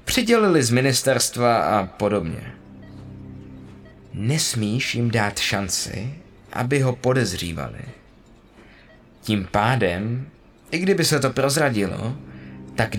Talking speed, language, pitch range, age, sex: 90 wpm, Czech, 100-145 Hz, 20-39, male